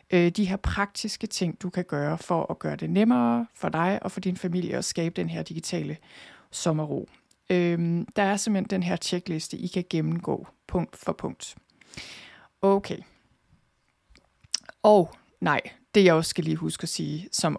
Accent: native